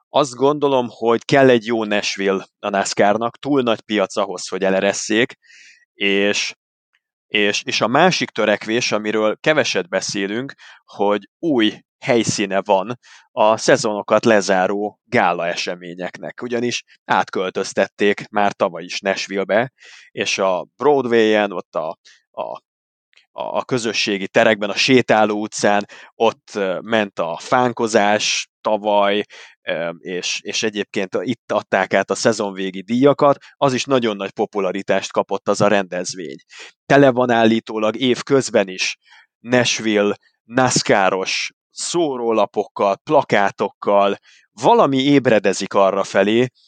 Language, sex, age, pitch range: Hungarian, male, 30-49, 100-125 Hz